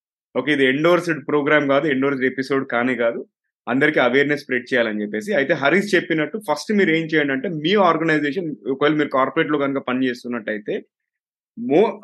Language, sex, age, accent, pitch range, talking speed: Telugu, male, 30-49, native, 130-160 Hz, 160 wpm